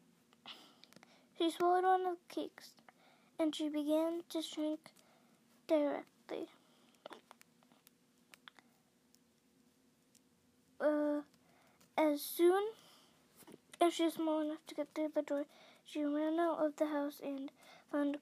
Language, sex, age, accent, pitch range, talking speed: English, female, 20-39, American, 290-330 Hz, 110 wpm